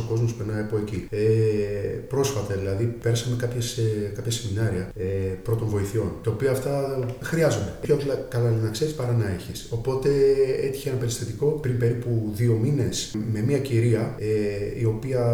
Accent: native